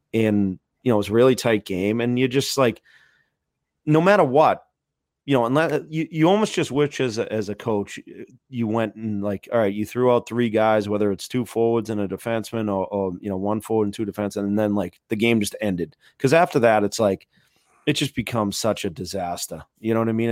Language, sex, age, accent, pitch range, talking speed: English, male, 30-49, American, 100-120 Hz, 235 wpm